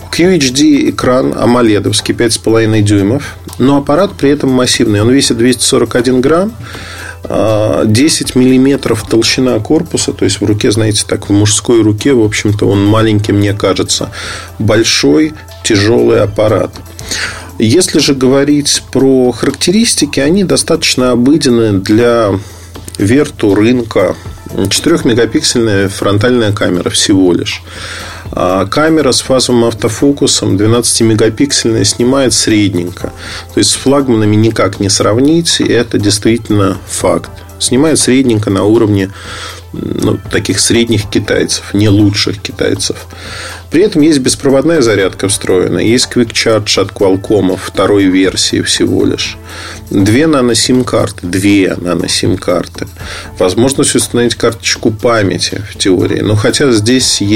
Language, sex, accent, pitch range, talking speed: Russian, male, native, 95-125 Hz, 115 wpm